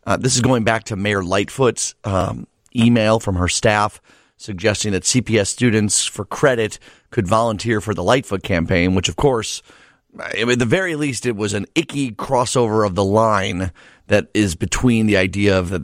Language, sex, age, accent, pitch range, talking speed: English, male, 30-49, American, 95-120 Hz, 180 wpm